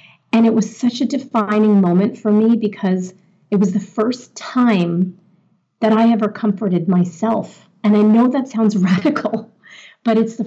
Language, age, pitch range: English, 30-49, 175-205 Hz